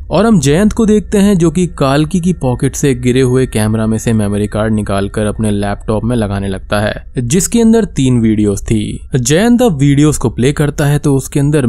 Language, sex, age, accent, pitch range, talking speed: Hindi, male, 20-39, native, 110-145 Hz, 205 wpm